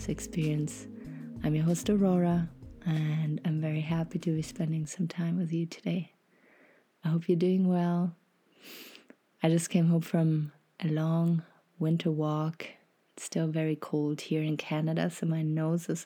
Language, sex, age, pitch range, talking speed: English, female, 30-49, 160-180 Hz, 155 wpm